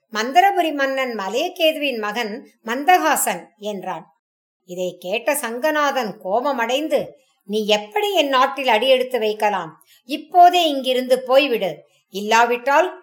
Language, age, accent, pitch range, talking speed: English, 50-69, Indian, 220-285 Hz, 90 wpm